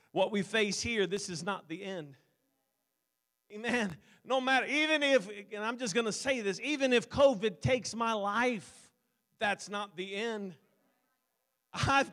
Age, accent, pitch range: 40-59, American, 205-270 Hz